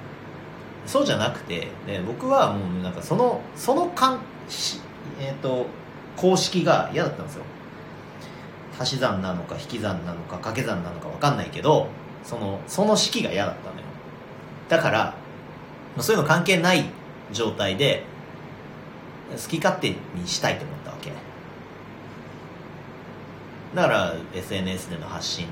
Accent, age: native, 40-59